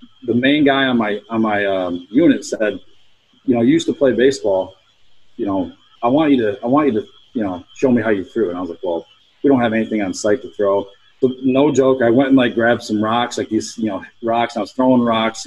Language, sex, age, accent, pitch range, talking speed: English, male, 40-59, American, 115-135 Hz, 265 wpm